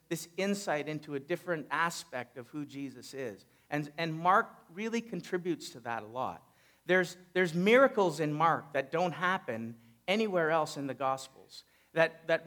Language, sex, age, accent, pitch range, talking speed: English, male, 50-69, American, 155-200 Hz, 165 wpm